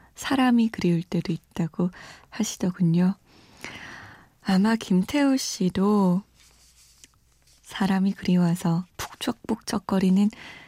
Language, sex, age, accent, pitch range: Korean, female, 20-39, native, 175-235 Hz